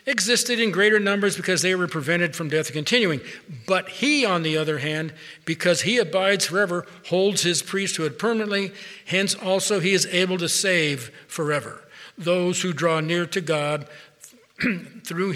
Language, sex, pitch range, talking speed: English, male, 160-200 Hz, 155 wpm